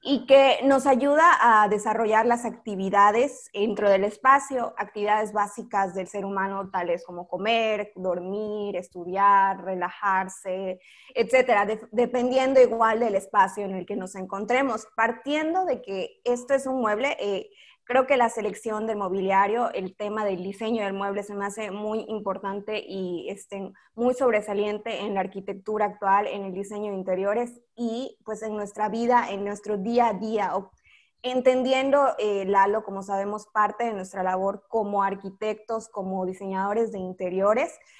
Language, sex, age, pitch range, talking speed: Spanish, female, 20-39, 195-235 Hz, 150 wpm